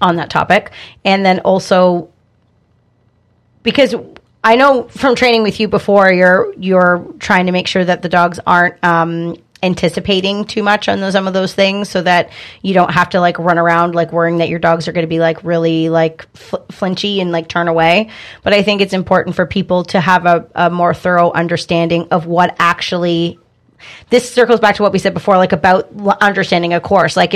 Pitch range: 170-195 Hz